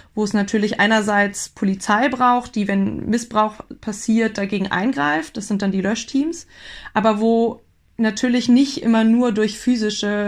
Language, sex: German, female